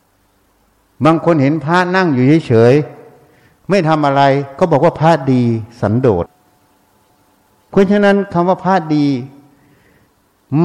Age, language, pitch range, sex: 60-79, Thai, 100-150 Hz, male